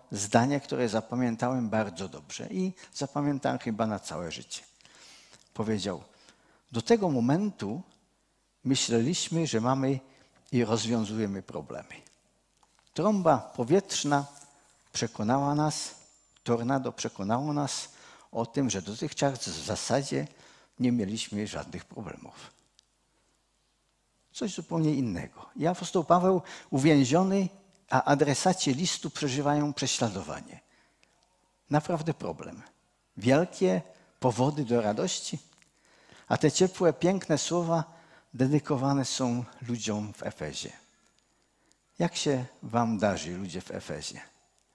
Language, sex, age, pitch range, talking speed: Czech, male, 50-69, 115-160 Hz, 100 wpm